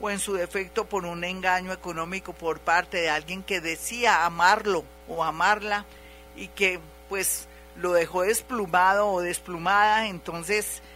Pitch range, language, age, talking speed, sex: 170-210 Hz, Spanish, 50-69, 140 wpm, female